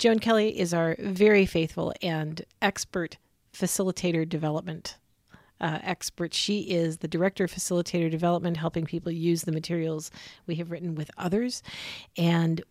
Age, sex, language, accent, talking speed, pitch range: 40-59, female, English, American, 140 wpm, 165-195 Hz